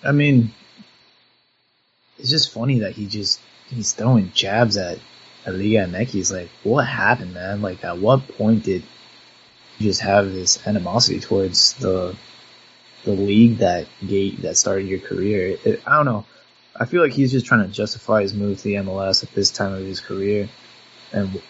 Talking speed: 180 wpm